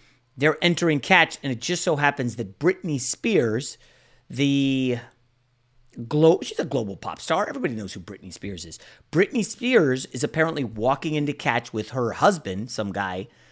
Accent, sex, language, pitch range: American, male, English, 120-165 Hz